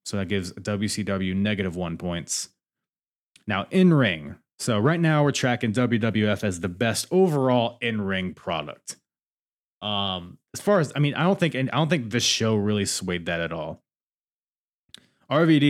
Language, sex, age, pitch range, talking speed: English, male, 20-39, 95-130 Hz, 170 wpm